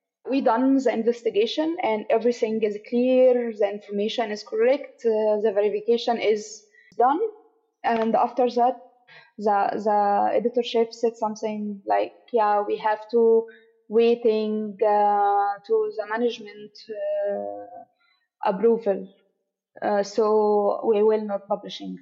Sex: female